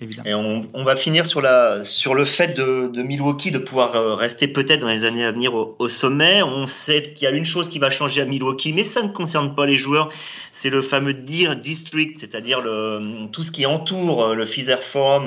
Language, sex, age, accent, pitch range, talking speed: French, male, 30-49, French, 120-155 Hz, 230 wpm